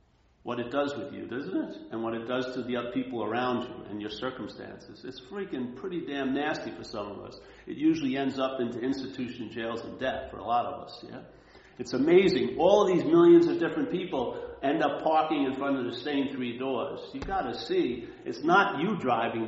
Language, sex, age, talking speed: English, male, 50-69, 215 wpm